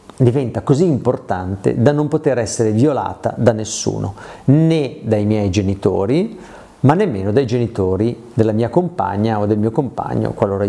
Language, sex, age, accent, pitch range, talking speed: Italian, male, 40-59, native, 115-155 Hz, 145 wpm